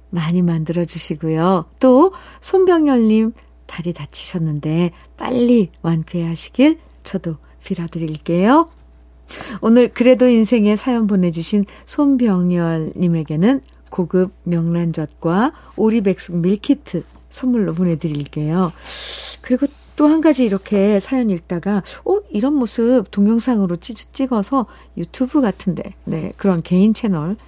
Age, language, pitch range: 50-69, Korean, 175-255 Hz